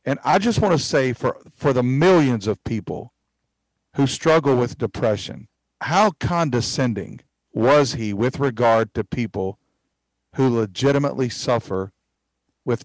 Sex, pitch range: male, 115-145 Hz